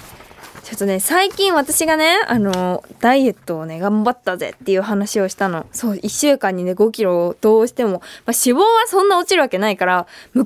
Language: Japanese